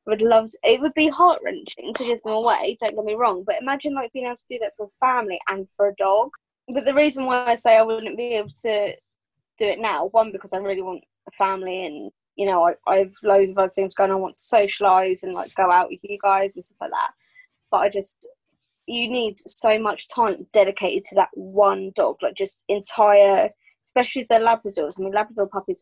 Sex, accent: female, British